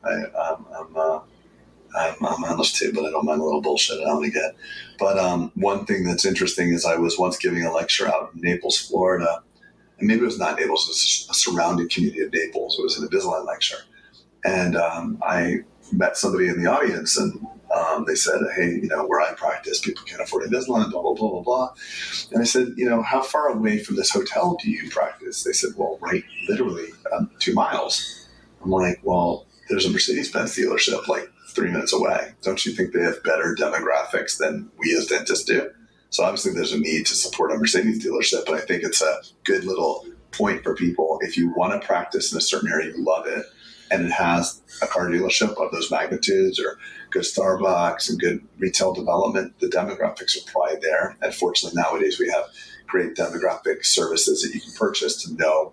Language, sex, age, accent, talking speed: English, male, 30-49, American, 205 wpm